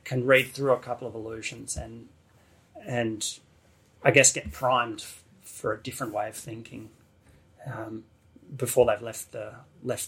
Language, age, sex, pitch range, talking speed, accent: English, 30-49, male, 115-140 Hz, 150 wpm, Australian